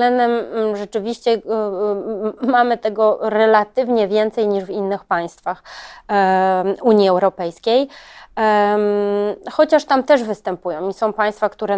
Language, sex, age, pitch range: Polish, female, 20-39, 190-220 Hz